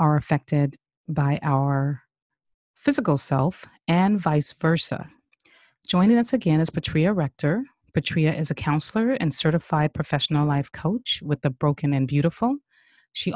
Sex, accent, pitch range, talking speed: female, American, 145-195 Hz, 135 wpm